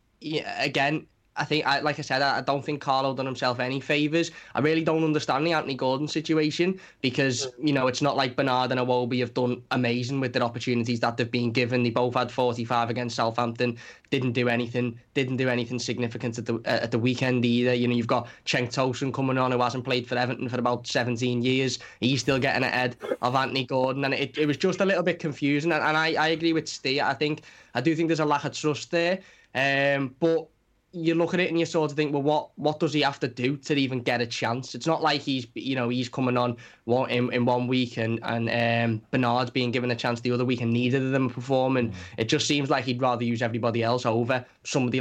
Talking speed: 235 wpm